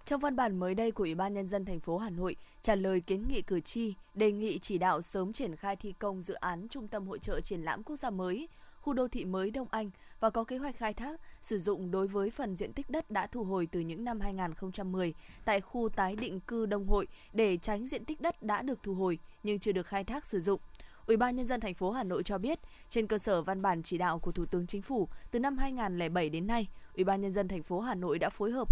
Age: 20-39